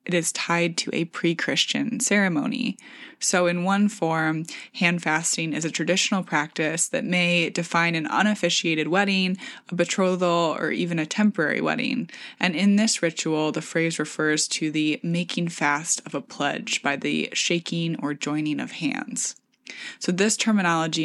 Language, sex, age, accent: English, female, 20-39, American